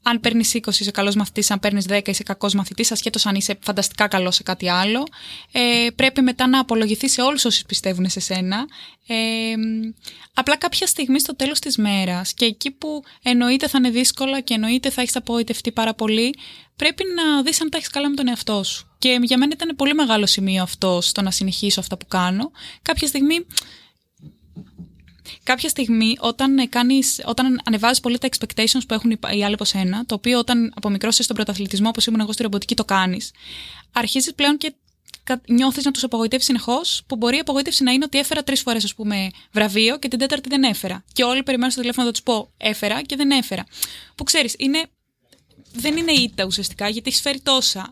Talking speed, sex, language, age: 195 wpm, female, Greek, 20-39